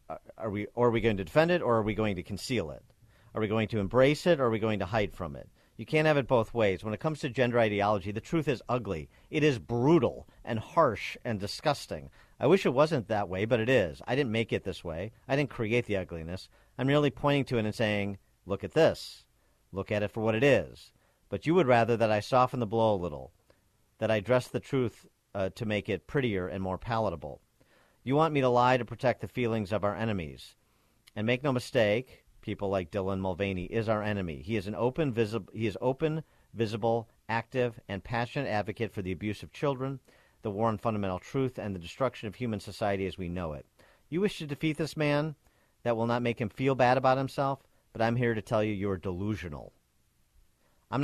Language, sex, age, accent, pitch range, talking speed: English, male, 50-69, American, 100-130 Hz, 230 wpm